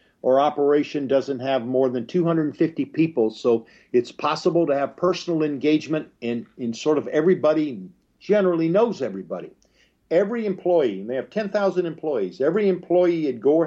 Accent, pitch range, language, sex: American, 130-175 Hz, English, male